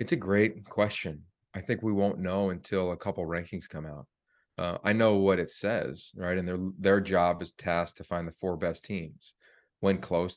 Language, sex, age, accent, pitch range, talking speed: English, male, 30-49, American, 90-105 Hz, 205 wpm